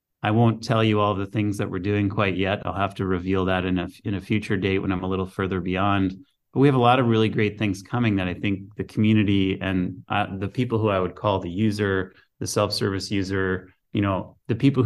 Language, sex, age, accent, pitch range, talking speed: English, male, 30-49, American, 95-115 Hz, 245 wpm